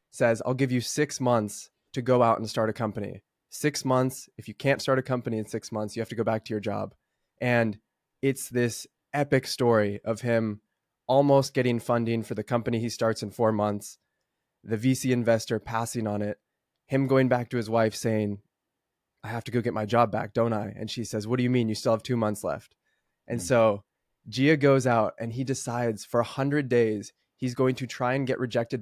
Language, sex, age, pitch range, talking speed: English, male, 20-39, 110-130 Hz, 220 wpm